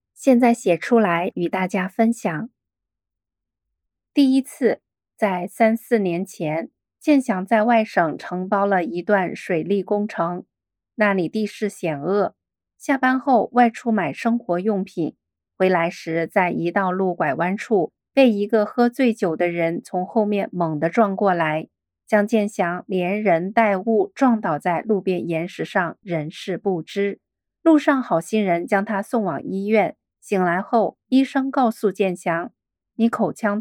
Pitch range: 180-230 Hz